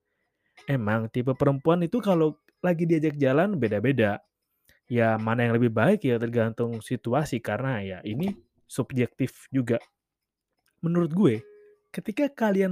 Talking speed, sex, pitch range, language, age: 125 wpm, male, 115-170 Hz, Indonesian, 20-39